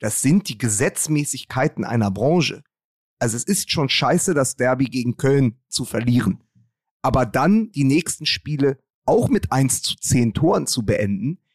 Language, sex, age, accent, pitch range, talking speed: German, male, 30-49, German, 125-165 Hz, 155 wpm